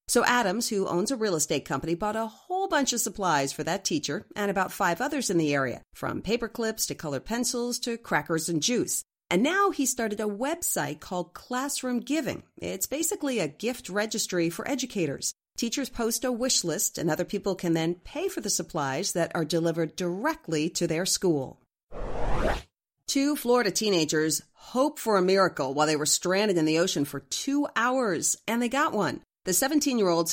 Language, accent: English, American